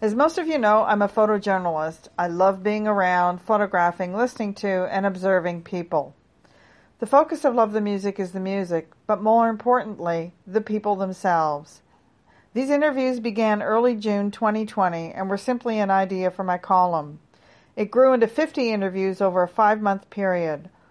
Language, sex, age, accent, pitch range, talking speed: English, female, 50-69, American, 185-230 Hz, 160 wpm